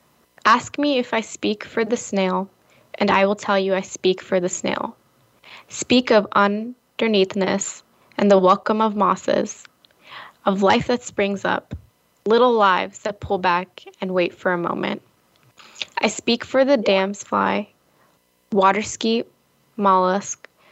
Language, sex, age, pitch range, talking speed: English, female, 10-29, 185-220 Hz, 145 wpm